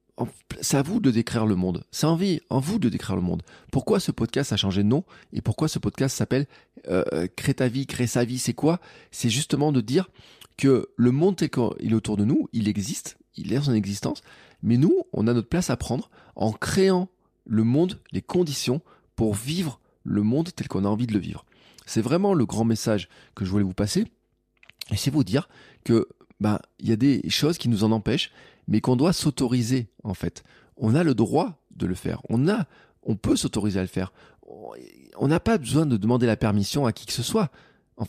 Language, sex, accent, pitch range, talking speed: French, male, French, 110-140 Hz, 220 wpm